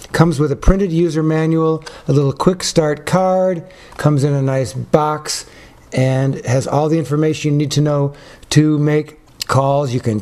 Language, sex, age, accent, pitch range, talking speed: English, male, 60-79, American, 140-160 Hz, 175 wpm